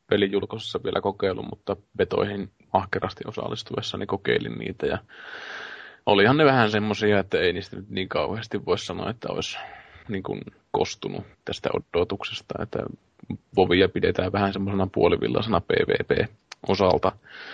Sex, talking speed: male, 115 wpm